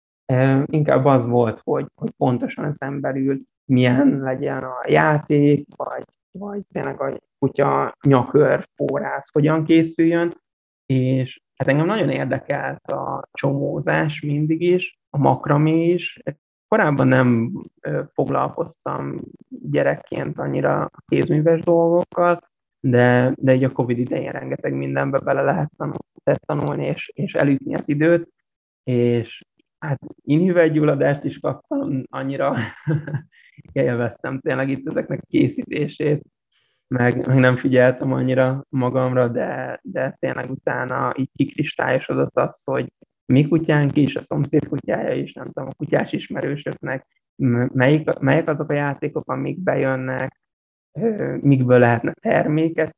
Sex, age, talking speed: male, 20-39, 115 wpm